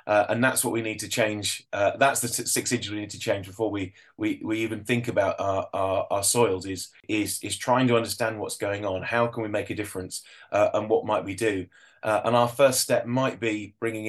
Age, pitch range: 20-39, 100-120 Hz